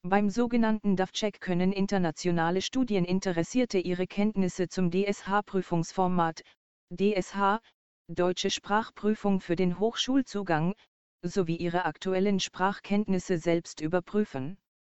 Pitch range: 175-205 Hz